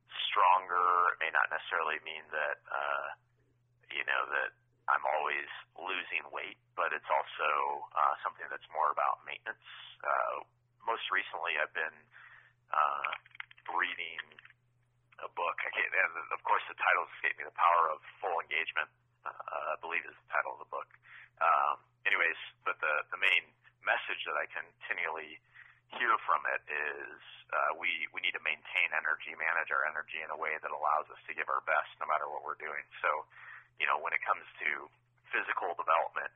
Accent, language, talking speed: American, English, 165 wpm